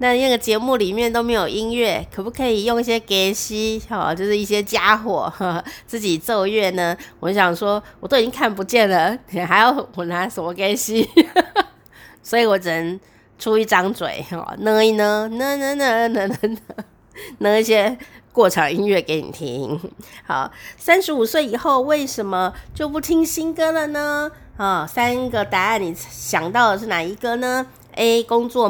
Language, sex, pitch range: Chinese, female, 185-265 Hz